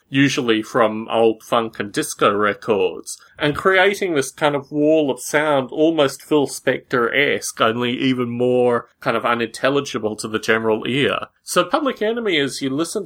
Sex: male